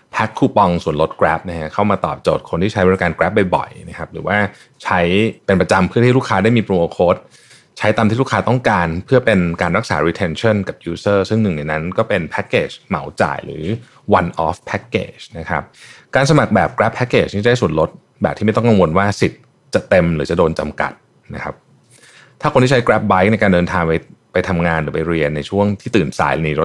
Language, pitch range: Thai, 80-105 Hz